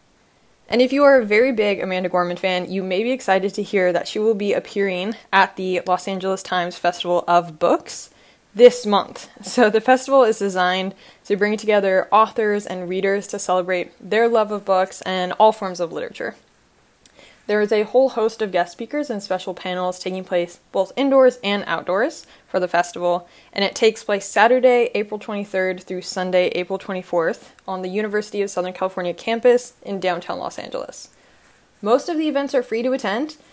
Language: English